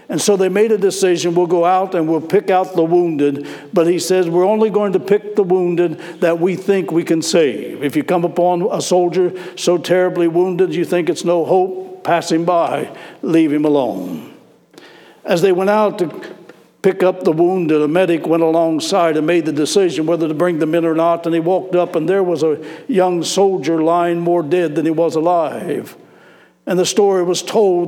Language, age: English, 60-79